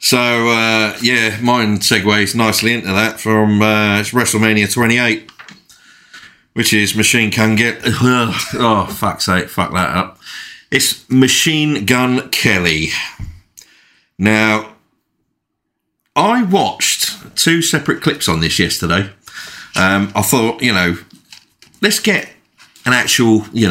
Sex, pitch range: male, 100-125 Hz